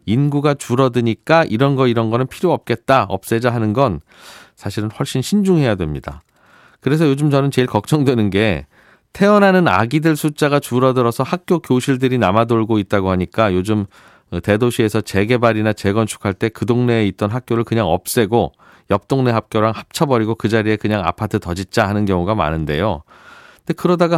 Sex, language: male, Korean